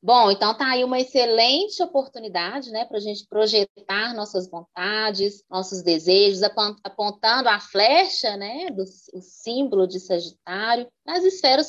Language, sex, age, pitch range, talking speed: Portuguese, female, 20-39, 185-235 Hz, 140 wpm